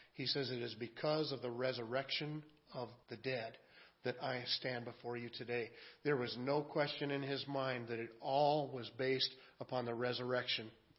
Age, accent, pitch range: 40-59, American, 145-185 Hz